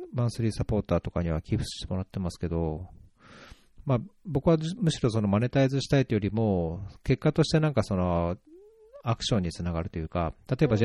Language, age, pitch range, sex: Japanese, 40-59, 95-135 Hz, male